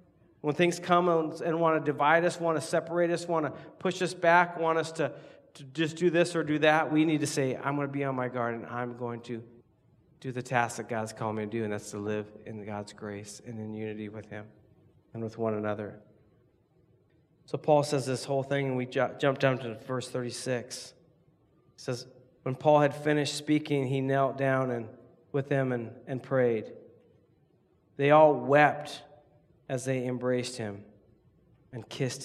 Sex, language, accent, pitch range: male, English, American, 120-145 Hz